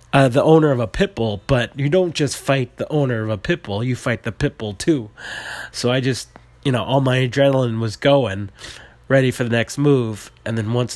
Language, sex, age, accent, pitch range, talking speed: English, male, 30-49, American, 110-135 Hz, 230 wpm